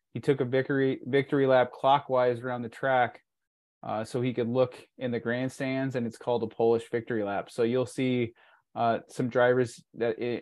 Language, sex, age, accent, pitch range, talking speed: English, male, 20-39, American, 115-135 Hz, 185 wpm